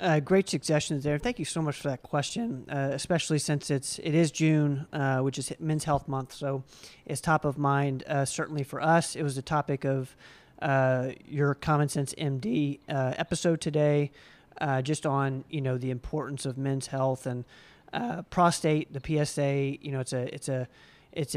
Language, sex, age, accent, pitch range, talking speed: English, male, 40-59, American, 140-160 Hz, 190 wpm